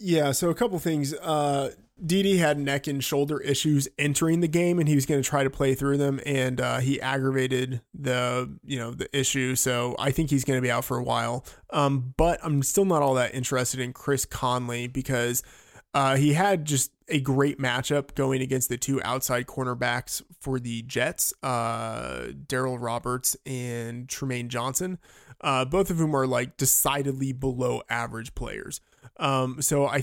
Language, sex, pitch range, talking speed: English, male, 125-145 Hz, 185 wpm